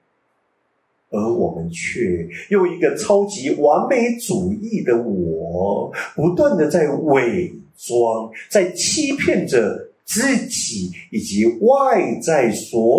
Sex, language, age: male, Chinese, 50-69